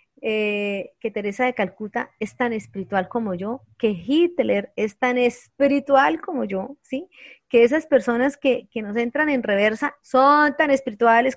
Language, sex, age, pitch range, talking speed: Spanish, female, 30-49, 205-260 Hz, 160 wpm